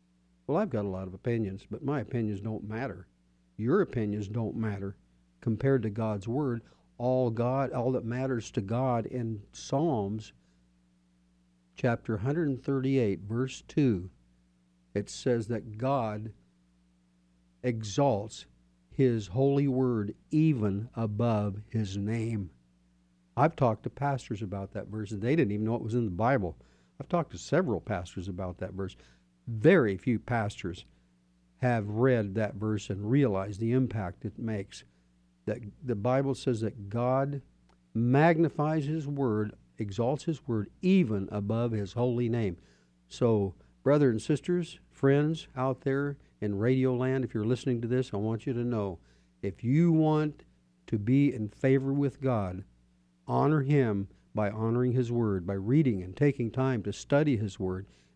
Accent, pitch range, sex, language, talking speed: American, 95-130 Hz, male, English, 150 wpm